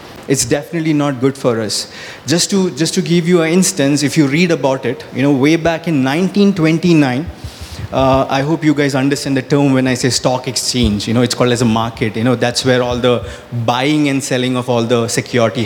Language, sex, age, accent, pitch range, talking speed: English, male, 30-49, Indian, 130-160 Hz, 220 wpm